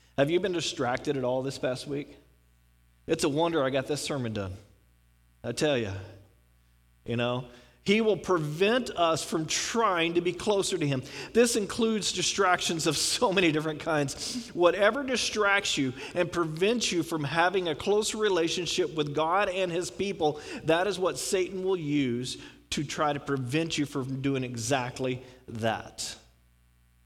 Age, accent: 40-59, American